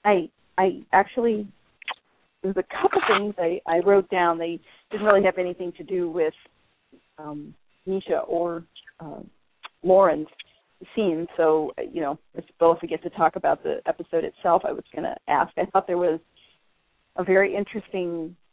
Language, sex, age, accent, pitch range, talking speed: English, female, 40-59, American, 155-190 Hz, 165 wpm